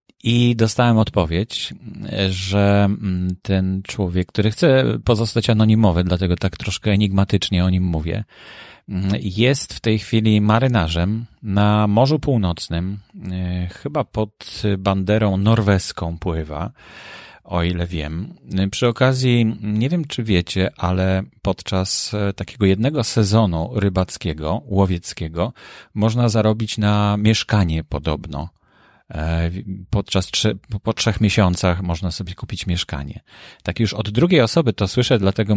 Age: 40-59